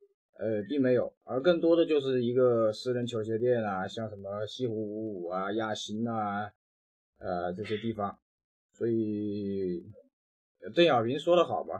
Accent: native